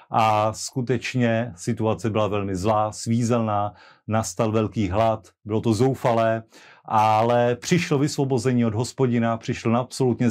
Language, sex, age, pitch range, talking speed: Slovak, male, 30-49, 110-125 Hz, 120 wpm